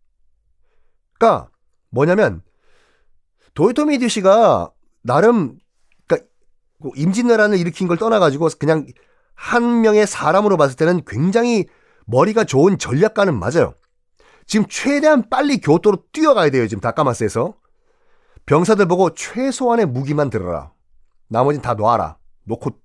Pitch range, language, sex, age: 145-235 Hz, Korean, male, 40-59